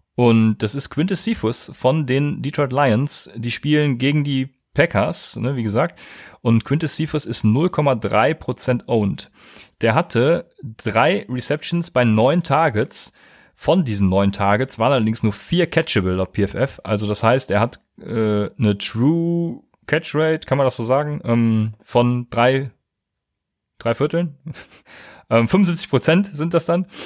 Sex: male